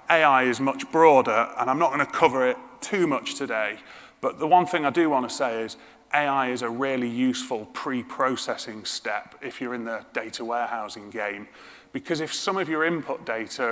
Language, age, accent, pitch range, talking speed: English, 30-49, British, 120-160 Hz, 195 wpm